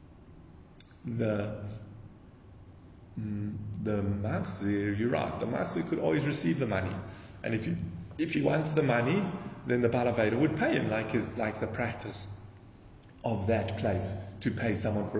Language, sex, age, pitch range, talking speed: English, male, 30-49, 100-120 Hz, 150 wpm